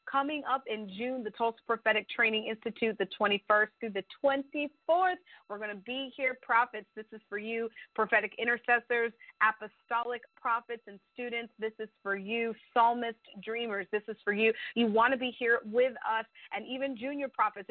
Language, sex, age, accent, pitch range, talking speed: English, female, 30-49, American, 215-255 Hz, 175 wpm